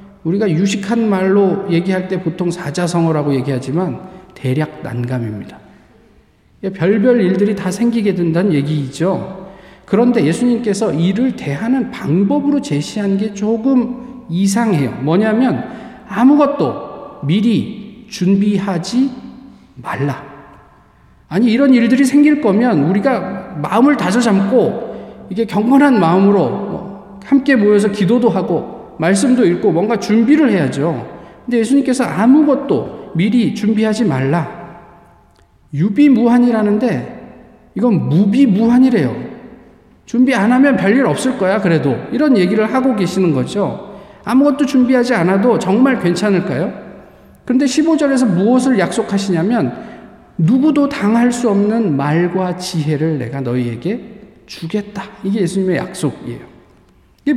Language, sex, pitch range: Korean, male, 180-245 Hz